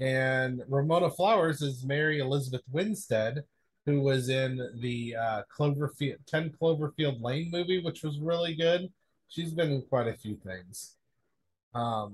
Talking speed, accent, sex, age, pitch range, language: 145 wpm, American, male, 30-49, 120-155 Hz, English